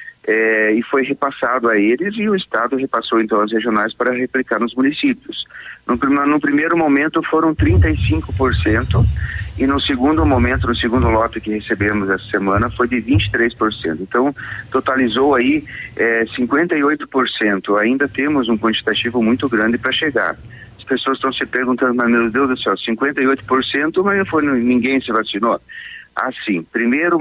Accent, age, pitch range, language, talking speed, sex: Brazilian, 40-59, 115-150 Hz, Portuguese, 150 wpm, male